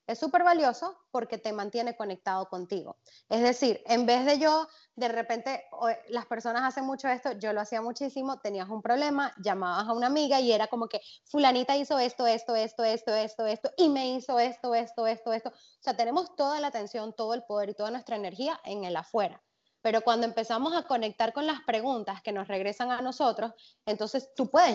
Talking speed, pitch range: 200 wpm, 215-265 Hz